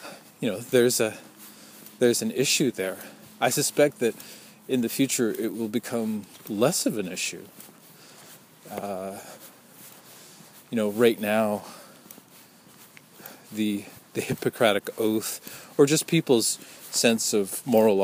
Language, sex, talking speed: English, male, 120 wpm